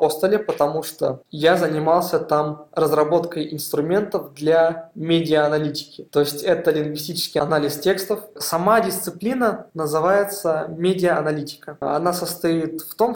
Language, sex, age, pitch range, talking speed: Russian, male, 20-39, 155-180 Hz, 105 wpm